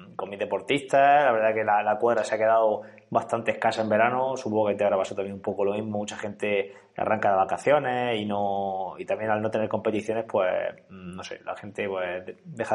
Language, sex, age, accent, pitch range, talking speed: Spanish, male, 20-39, Spanish, 105-120 Hz, 220 wpm